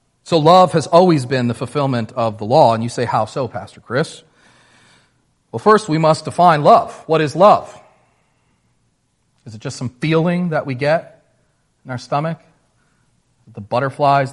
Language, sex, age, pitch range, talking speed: English, male, 40-59, 120-155 Hz, 165 wpm